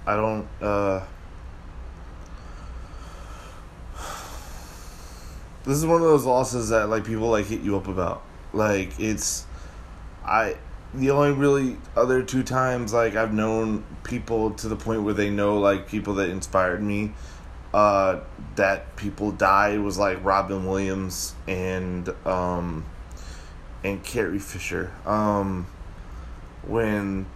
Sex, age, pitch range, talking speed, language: male, 20-39, 80-105 Hz, 125 wpm, English